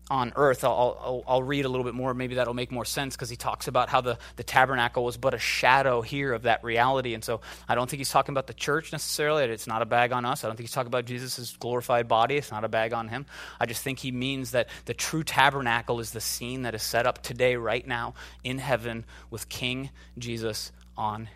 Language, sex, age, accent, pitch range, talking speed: English, male, 20-39, American, 95-140 Hz, 245 wpm